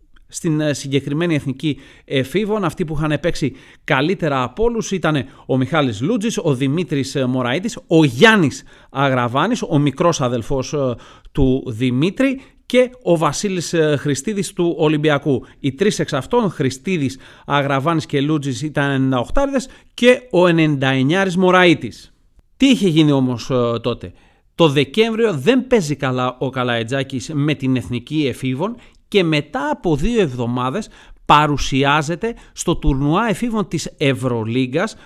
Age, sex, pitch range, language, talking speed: 40-59, male, 135-190 Hz, Greek, 125 wpm